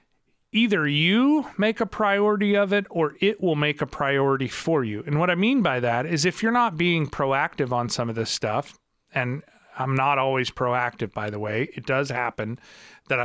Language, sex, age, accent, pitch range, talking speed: English, male, 30-49, American, 125-170 Hz, 200 wpm